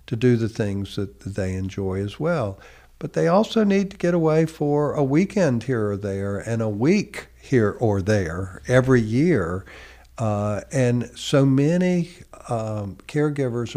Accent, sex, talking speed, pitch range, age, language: American, male, 155 wpm, 105-135 Hz, 60-79, English